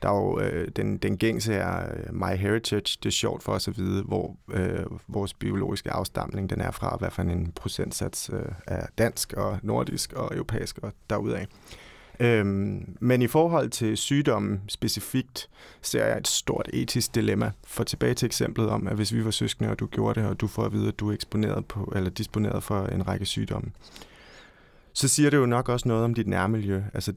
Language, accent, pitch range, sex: Danish, native, 95-115 Hz, male